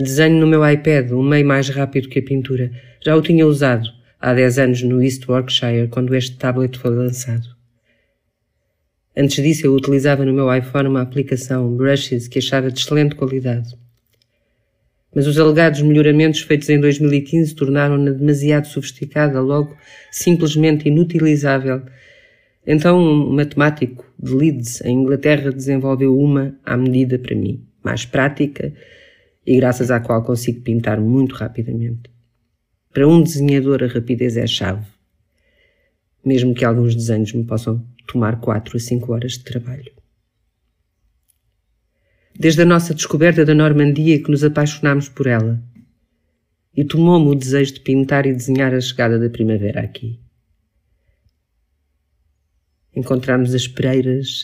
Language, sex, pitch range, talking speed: Portuguese, female, 120-145 Hz, 140 wpm